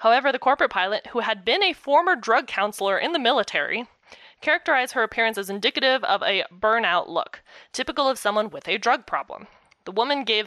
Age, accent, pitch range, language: 20-39, American, 195-240 Hz, English